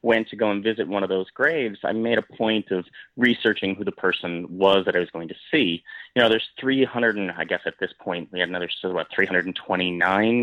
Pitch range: 95-120 Hz